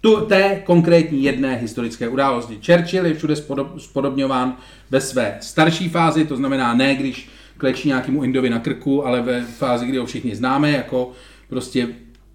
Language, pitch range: Czech, 125-170 Hz